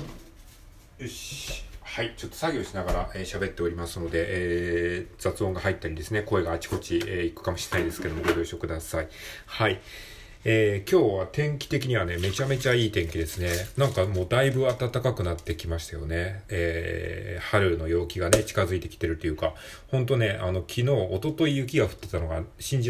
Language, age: Japanese, 40-59